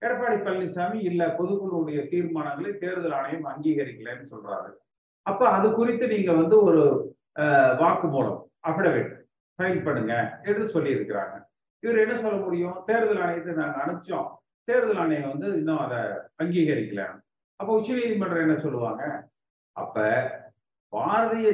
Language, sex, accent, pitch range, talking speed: Tamil, male, native, 135-185 Hz, 120 wpm